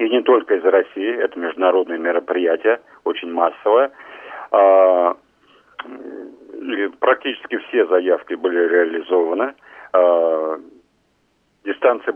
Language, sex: Russian, male